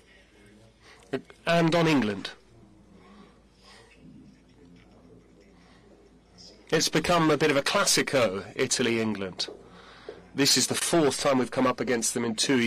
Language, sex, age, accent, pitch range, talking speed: English, male, 30-49, British, 115-135 Hz, 110 wpm